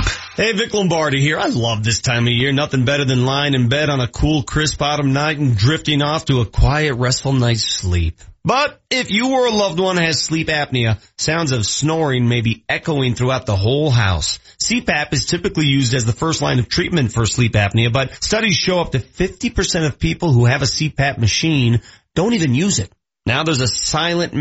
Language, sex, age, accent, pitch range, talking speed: English, male, 40-59, American, 125-175 Hz, 210 wpm